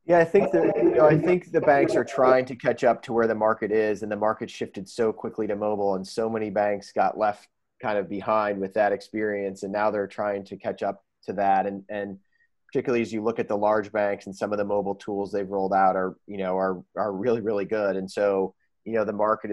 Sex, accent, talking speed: male, American, 250 wpm